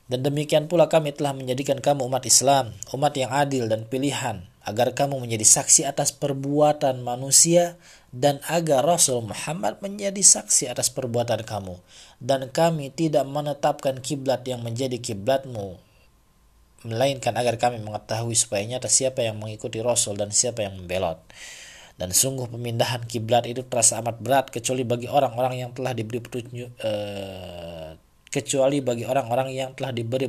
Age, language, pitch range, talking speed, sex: 20-39, Malay, 115-150 Hz, 145 wpm, male